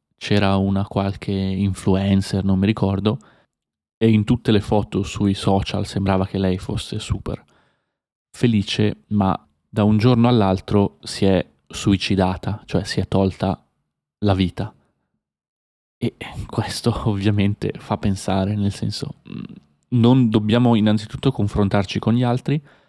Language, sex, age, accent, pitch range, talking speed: Italian, male, 20-39, native, 95-115 Hz, 125 wpm